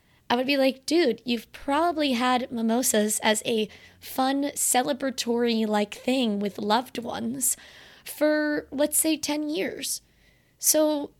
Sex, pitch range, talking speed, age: female, 210-275 Hz, 125 wpm, 20-39